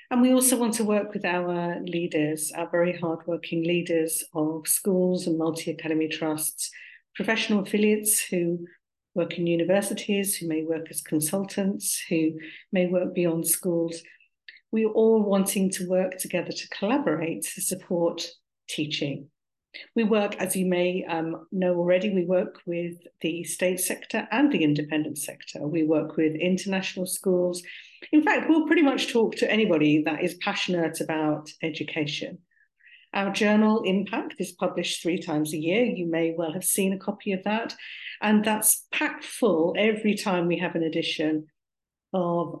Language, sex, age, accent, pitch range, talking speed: English, female, 50-69, British, 165-195 Hz, 155 wpm